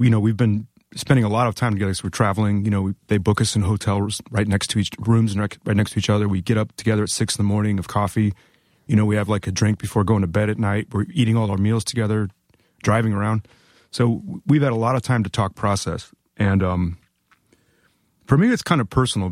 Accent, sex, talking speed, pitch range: American, male, 260 wpm, 100-120 Hz